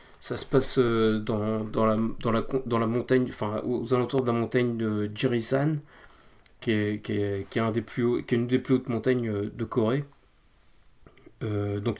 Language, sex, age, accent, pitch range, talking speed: French, male, 30-49, French, 105-125 Hz, 150 wpm